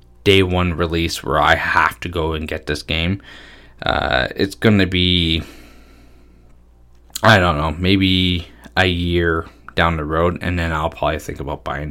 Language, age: English, 20-39